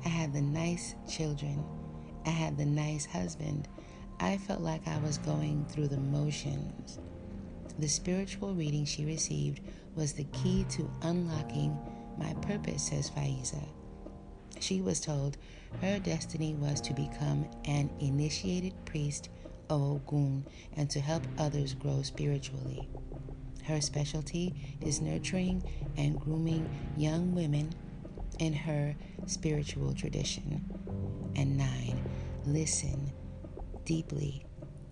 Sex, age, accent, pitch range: female, 30-49, American, 135-160 Hz